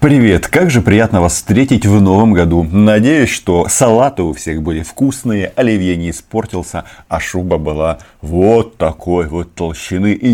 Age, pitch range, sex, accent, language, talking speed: 30-49, 85-110 Hz, male, native, Russian, 155 wpm